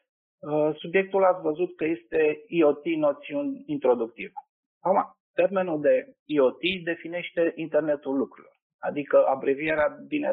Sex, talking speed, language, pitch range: male, 100 wpm, Romanian, 150-215 Hz